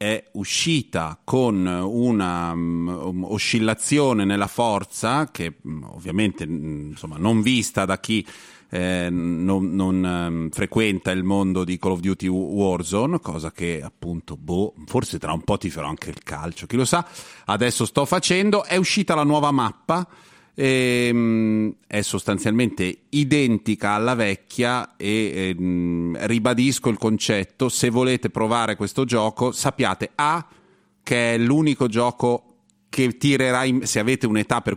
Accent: native